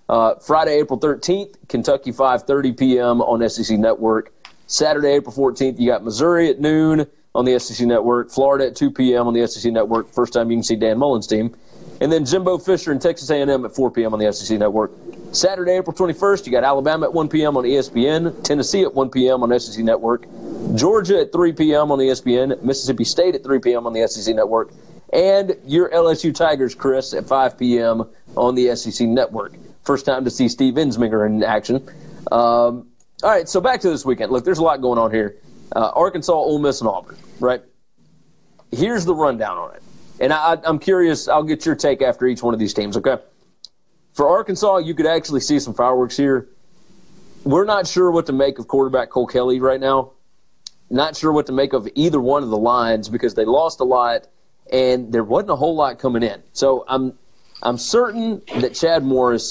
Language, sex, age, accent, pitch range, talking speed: English, male, 40-59, American, 120-155 Hz, 205 wpm